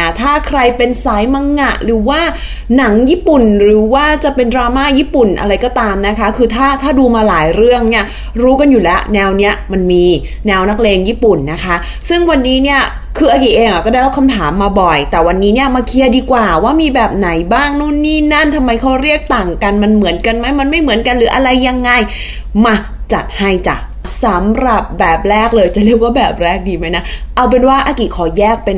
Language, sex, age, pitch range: Thai, female, 20-39, 195-260 Hz